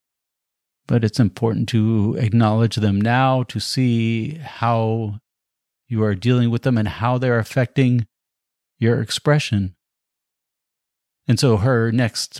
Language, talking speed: English, 120 wpm